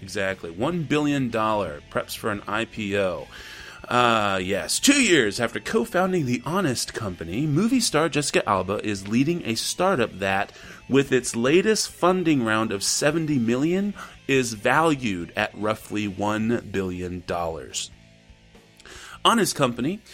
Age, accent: 30-49, American